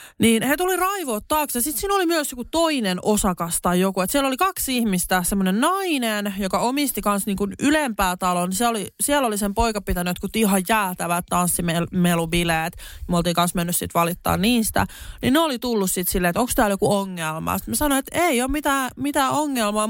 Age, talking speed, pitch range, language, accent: 30-49, 185 wpm, 180-245 Hz, Finnish, native